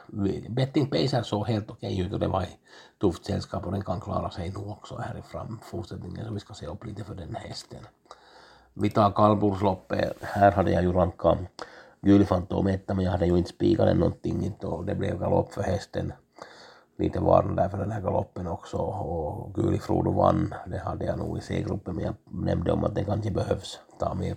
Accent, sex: Finnish, male